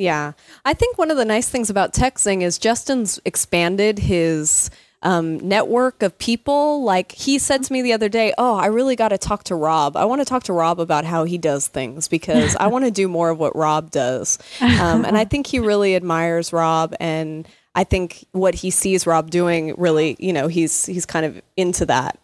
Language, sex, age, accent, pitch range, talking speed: English, female, 20-39, American, 165-210 Hz, 215 wpm